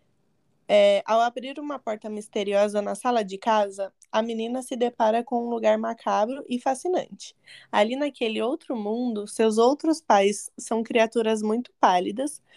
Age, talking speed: 20-39, 145 wpm